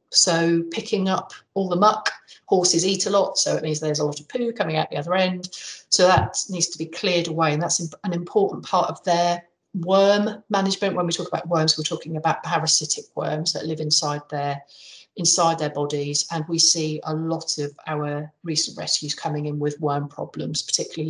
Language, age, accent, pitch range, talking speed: English, 40-59, British, 150-170 Hz, 200 wpm